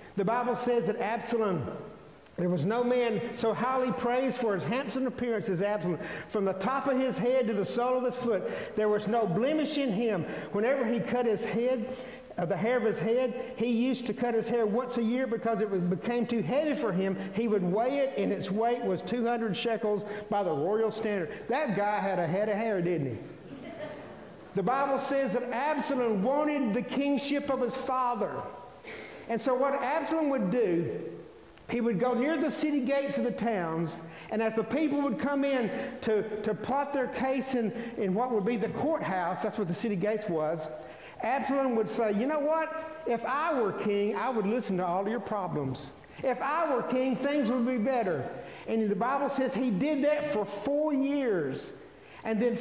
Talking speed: 200 wpm